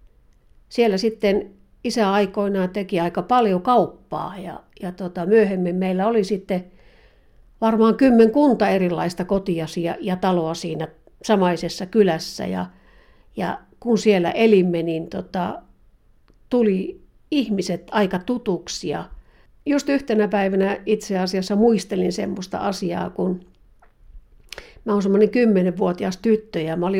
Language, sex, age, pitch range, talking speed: Finnish, female, 60-79, 180-215 Hz, 120 wpm